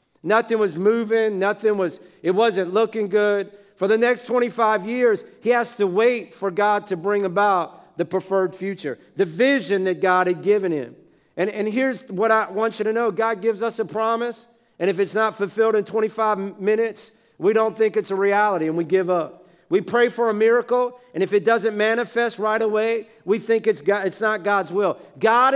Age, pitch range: 50-69, 190-225 Hz